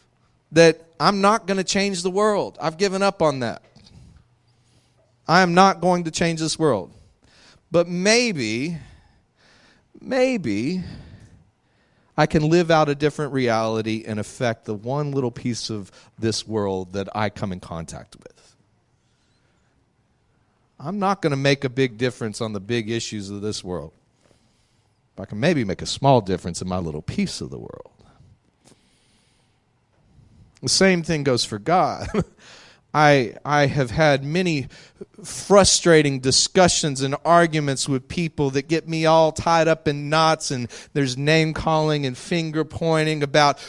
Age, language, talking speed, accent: 40-59, English, 145 wpm, American